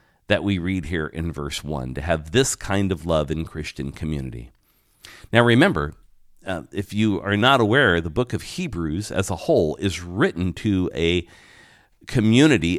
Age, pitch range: 50-69, 85-115 Hz